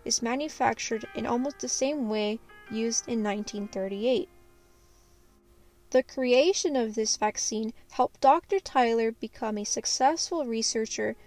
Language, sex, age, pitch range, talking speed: English, female, 10-29, 220-275 Hz, 115 wpm